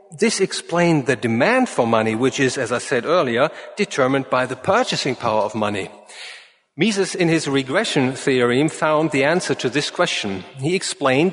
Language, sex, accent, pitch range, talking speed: English, male, German, 135-185 Hz, 170 wpm